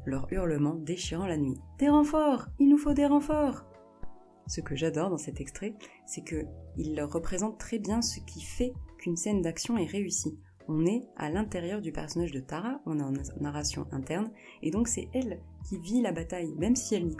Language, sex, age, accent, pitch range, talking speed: French, female, 20-39, French, 150-205 Hz, 195 wpm